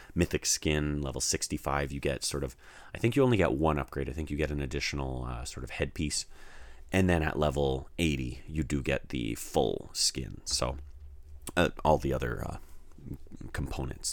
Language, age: English, 30-49